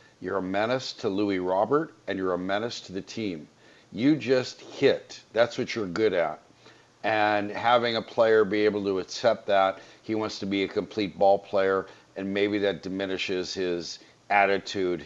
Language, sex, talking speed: English, male, 175 wpm